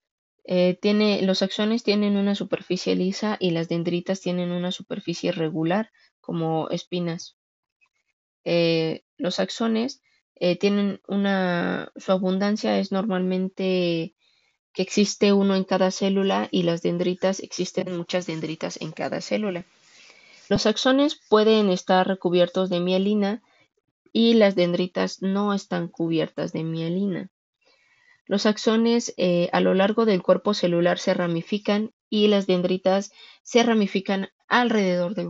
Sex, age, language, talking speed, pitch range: female, 20-39, Spanish, 125 wpm, 180-210 Hz